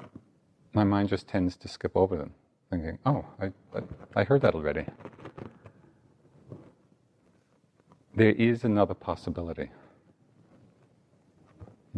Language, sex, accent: English, male, American